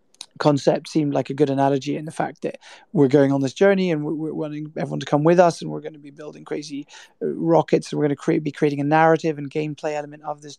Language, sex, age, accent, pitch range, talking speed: English, male, 20-39, British, 140-160 Hz, 260 wpm